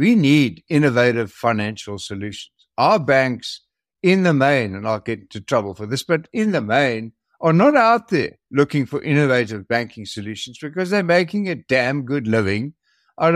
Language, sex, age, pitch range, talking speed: English, male, 60-79, 125-185 Hz, 170 wpm